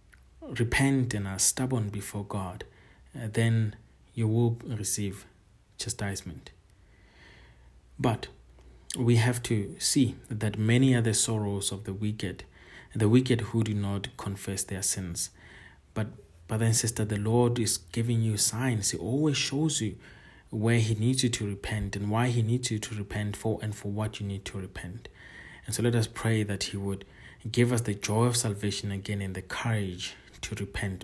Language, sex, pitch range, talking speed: English, male, 100-115 Hz, 170 wpm